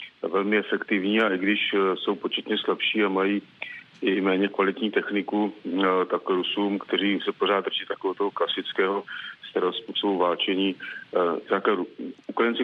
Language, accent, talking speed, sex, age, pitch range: Czech, native, 130 wpm, male, 40-59, 90-105 Hz